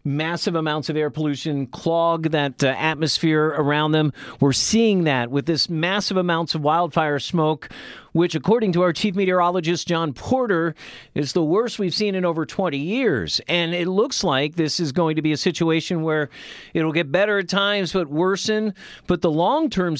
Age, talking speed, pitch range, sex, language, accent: 40-59, 180 wpm, 150-185 Hz, male, English, American